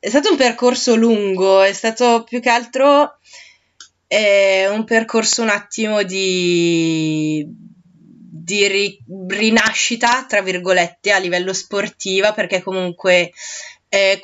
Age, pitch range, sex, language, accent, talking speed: 20-39, 175-200 Hz, female, Italian, native, 115 wpm